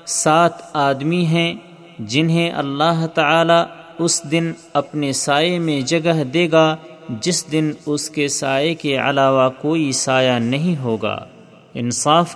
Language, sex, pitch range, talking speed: Urdu, male, 145-170 Hz, 125 wpm